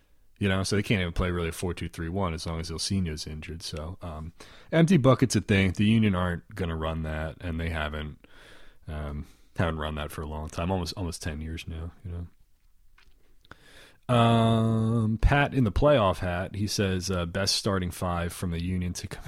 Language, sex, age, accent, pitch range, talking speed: English, male, 30-49, American, 80-105 Hz, 200 wpm